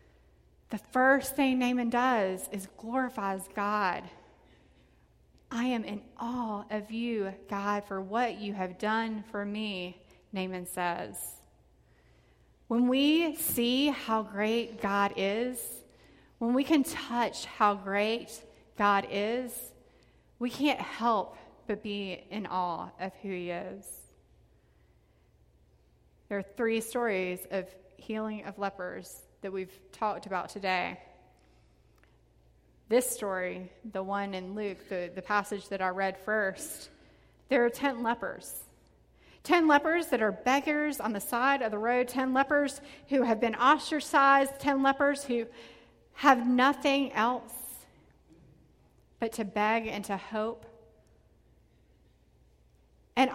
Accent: American